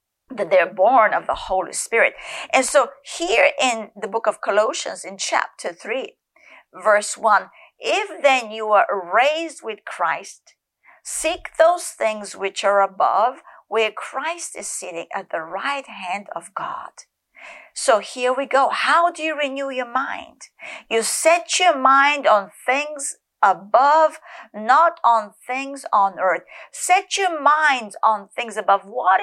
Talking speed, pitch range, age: 150 wpm, 210-315 Hz, 50-69